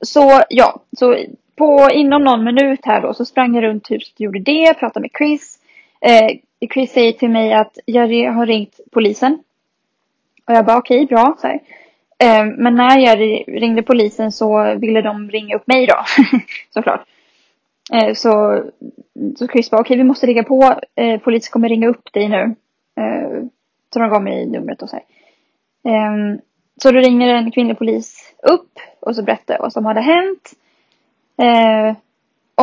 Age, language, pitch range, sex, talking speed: 10-29, English, 225-265 Hz, female, 170 wpm